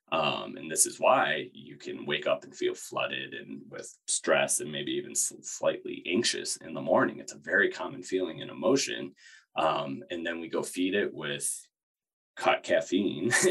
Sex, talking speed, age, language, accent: male, 180 wpm, 20-39, English, American